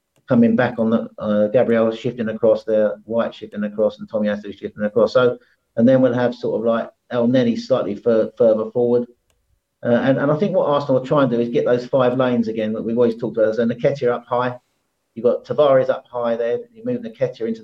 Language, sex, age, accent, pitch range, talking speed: English, male, 40-59, British, 115-140 Hz, 230 wpm